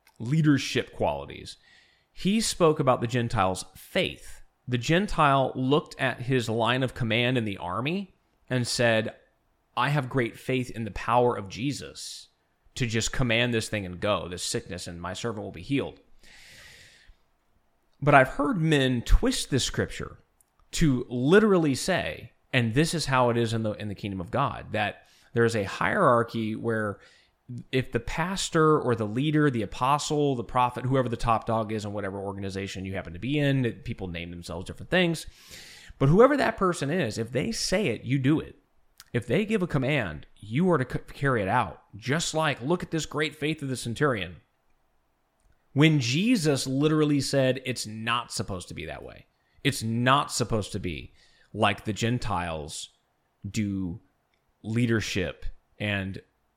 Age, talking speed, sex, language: 30-49, 165 wpm, male, English